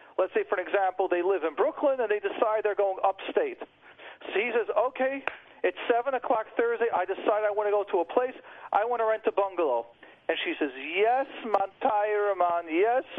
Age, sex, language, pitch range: 40-59, male, English, 190-255 Hz